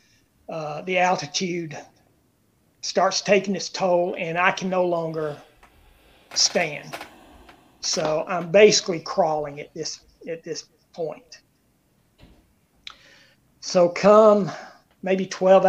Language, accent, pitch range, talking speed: English, American, 160-190 Hz, 100 wpm